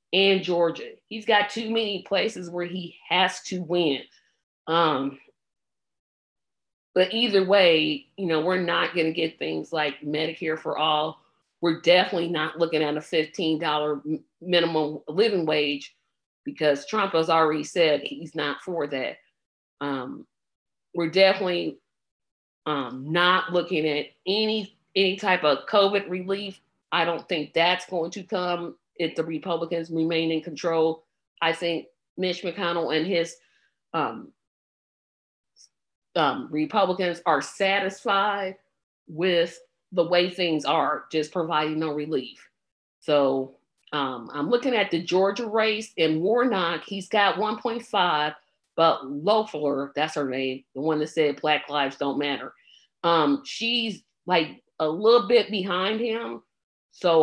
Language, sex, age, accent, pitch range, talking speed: English, female, 40-59, American, 155-190 Hz, 135 wpm